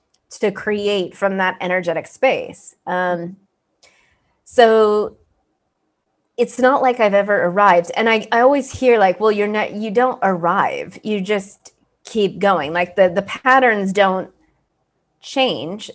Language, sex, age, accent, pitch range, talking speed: English, female, 30-49, American, 185-230 Hz, 135 wpm